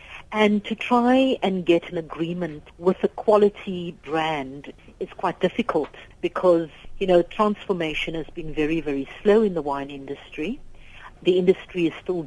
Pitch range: 150-185 Hz